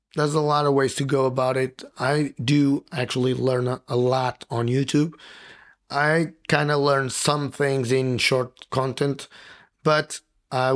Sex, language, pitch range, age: male, English, 125-145 Hz, 30-49